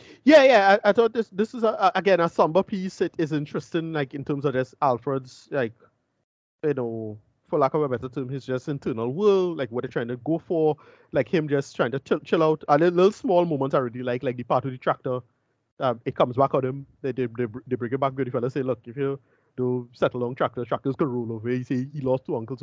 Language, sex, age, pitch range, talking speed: English, male, 30-49, 125-175 Hz, 265 wpm